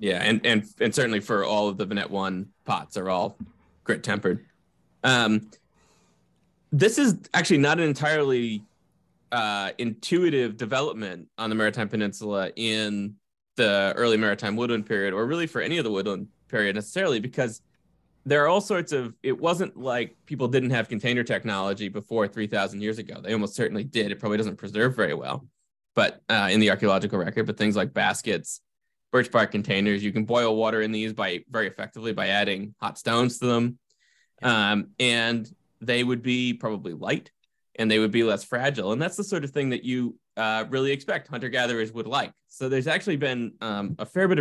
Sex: male